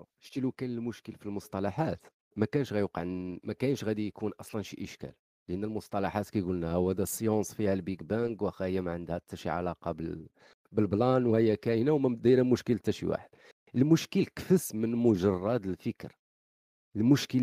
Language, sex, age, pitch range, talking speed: Arabic, male, 40-59, 95-130 Hz, 155 wpm